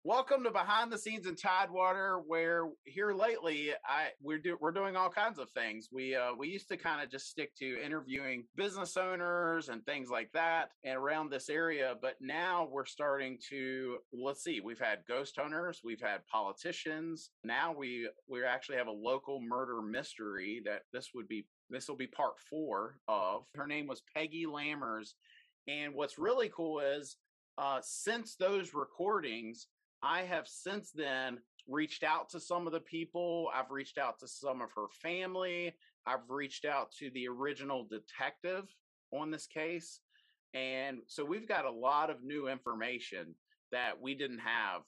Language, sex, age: English, male, 30-49